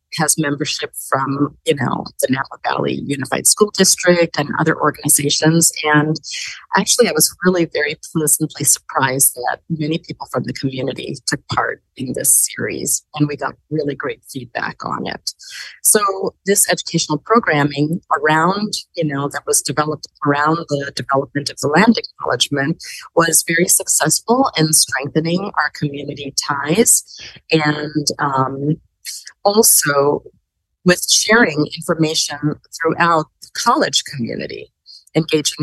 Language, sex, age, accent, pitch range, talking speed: English, female, 30-49, American, 145-175 Hz, 130 wpm